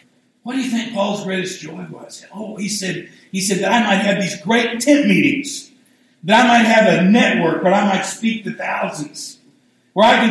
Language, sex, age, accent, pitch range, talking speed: English, male, 60-79, American, 140-210 Hz, 205 wpm